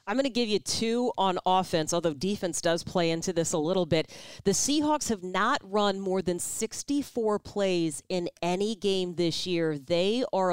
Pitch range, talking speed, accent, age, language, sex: 185-245 Hz, 190 wpm, American, 40-59, English, female